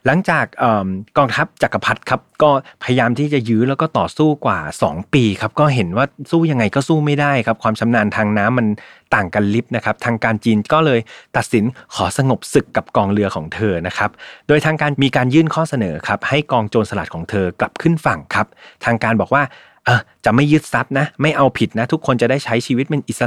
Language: Thai